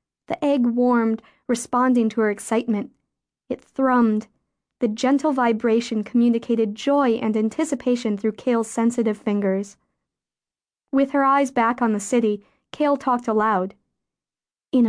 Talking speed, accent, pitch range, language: 125 wpm, American, 215-265 Hz, English